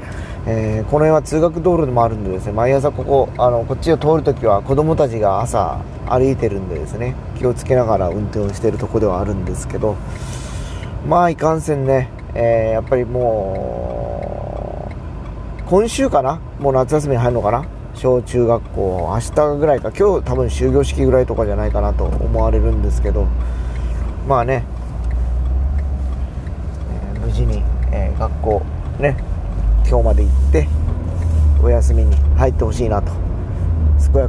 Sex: male